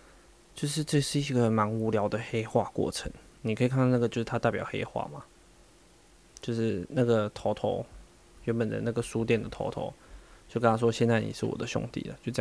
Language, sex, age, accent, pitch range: Chinese, male, 20-39, native, 115-130 Hz